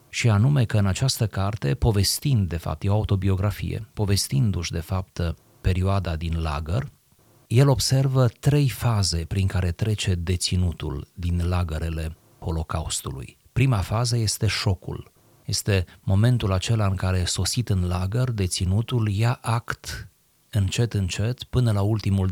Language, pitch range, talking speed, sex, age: Romanian, 95-120 Hz, 130 wpm, male, 30-49